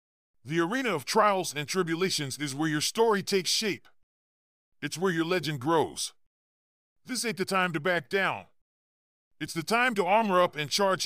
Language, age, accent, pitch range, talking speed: English, 40-59, American, 135-195 Hz, 175 wpm